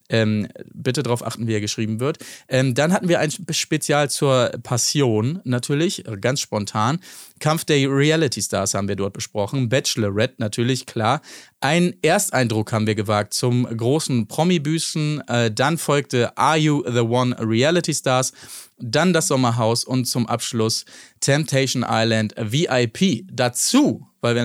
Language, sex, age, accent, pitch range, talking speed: German, male, 30-49, German, 115-150 Hz, 140 wpm